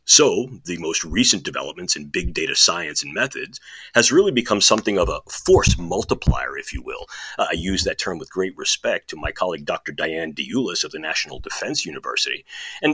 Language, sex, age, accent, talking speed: English, male, 40-59, American, 195 wpm